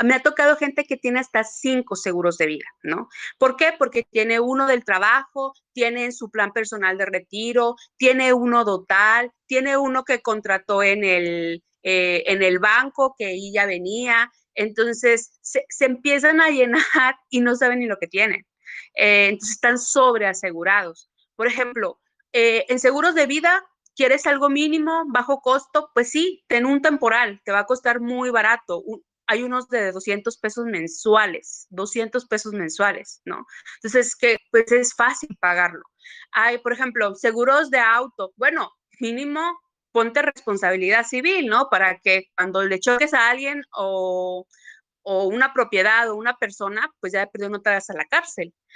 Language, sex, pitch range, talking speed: Spanish, female, 200-265 Hz, 165 wpm